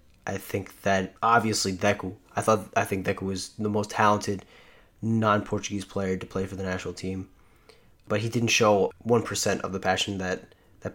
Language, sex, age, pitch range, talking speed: English, male, 20-39, 95-110 Hz, 175 wpm